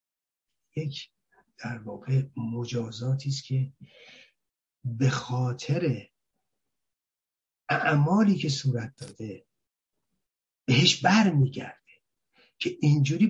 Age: 50-69